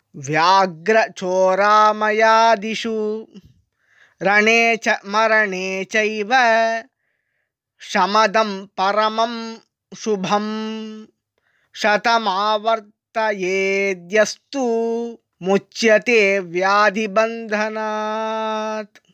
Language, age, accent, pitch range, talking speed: English, 20-39, Indian, 195-220 Hz, 45 wpm